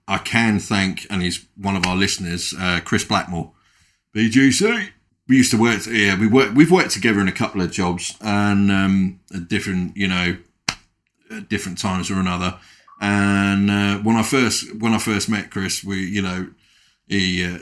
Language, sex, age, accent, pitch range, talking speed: English, male, 30-49, British, 95-115 Hz, 185 wpm